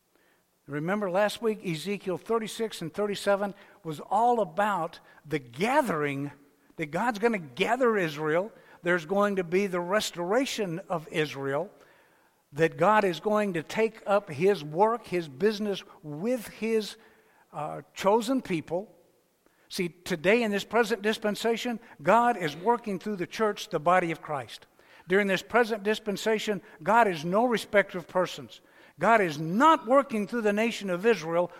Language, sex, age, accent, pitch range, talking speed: English, male, 60-79, American, 165-225 Hz, 145 wpm